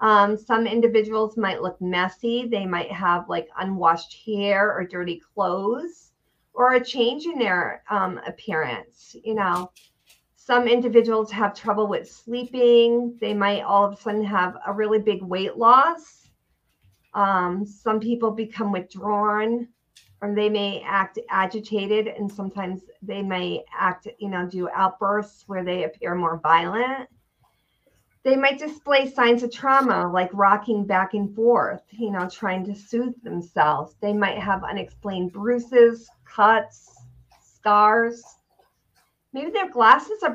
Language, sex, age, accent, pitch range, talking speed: English, female, 50-69, American, 185-235 Hz, 140 wpm